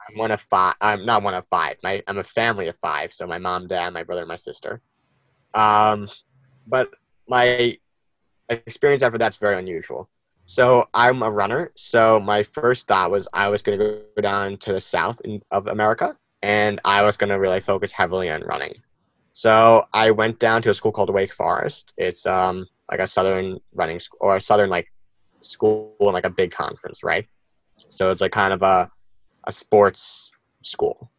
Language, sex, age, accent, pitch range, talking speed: English, male, 20-39, American, 95-110 Hz, 190 wpm